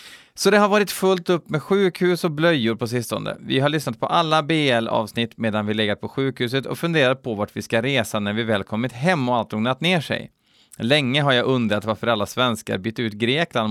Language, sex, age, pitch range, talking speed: Swedish, male, 30-49, 95-135 Hz, 220 wpm